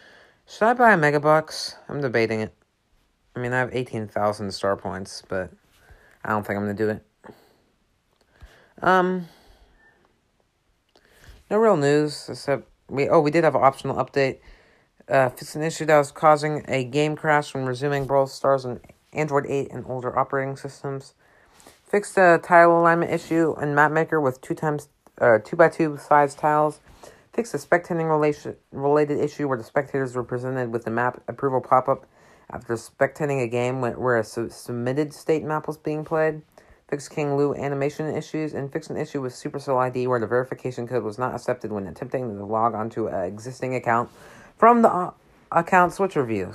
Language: English